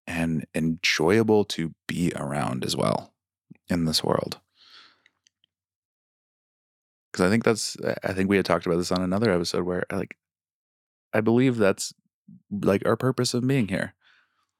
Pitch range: 85-95 Hz